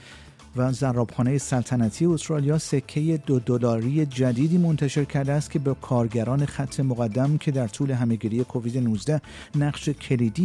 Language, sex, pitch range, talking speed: Persian, male, 110-140 Hz, 130 wpm